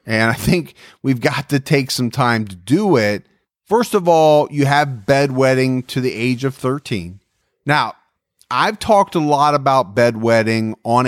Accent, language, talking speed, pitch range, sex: American, English, 170 wpm, 115-150 Hz, male